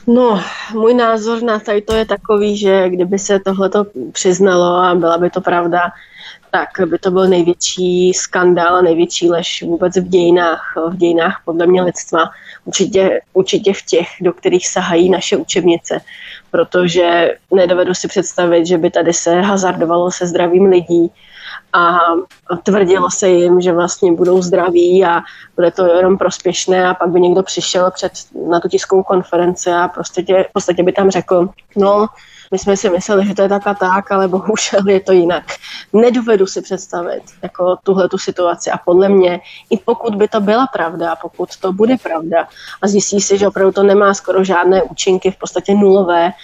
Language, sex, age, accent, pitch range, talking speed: Czech, female, 20-39, native, 175-195 Hz, 175 wpm